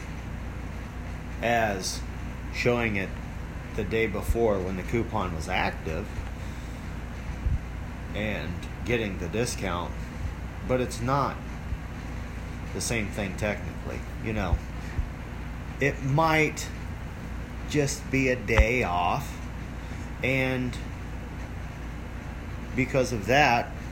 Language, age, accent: English, 30-49, American